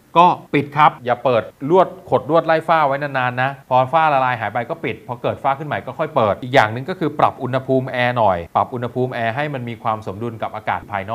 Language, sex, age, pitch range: Thai, male, 30-49, 110-140 Hz